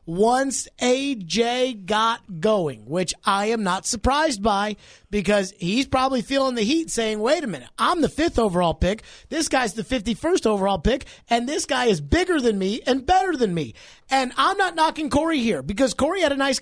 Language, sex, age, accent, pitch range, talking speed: English, male, 30-49, American, 180-255 Hz, 190 wpm